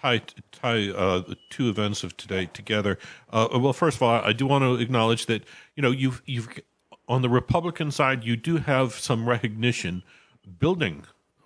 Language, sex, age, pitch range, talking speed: English, male, 50-69, 100-120 Hz, 175 wpm